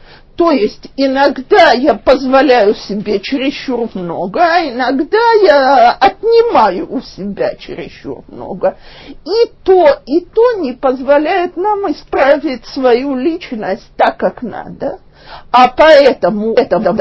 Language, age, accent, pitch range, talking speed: Russian, 50-69, native, 240-355 Hz, 115 wpm